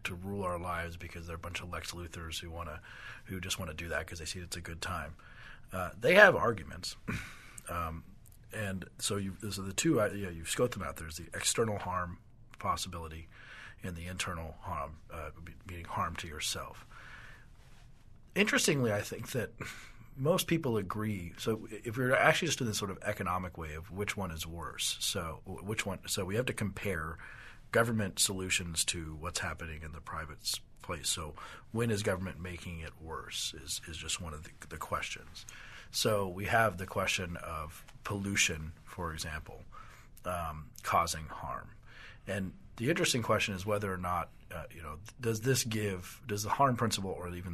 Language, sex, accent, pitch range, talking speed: English, male, American, 85-105 Hz, 185 wpm